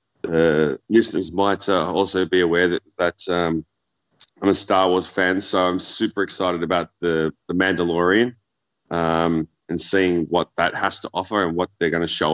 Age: 20-39